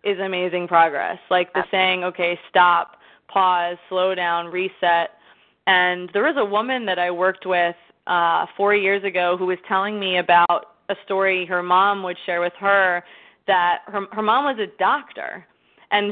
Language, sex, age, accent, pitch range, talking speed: English, female, 20-39, American, 180-205 Hz, 170 wpm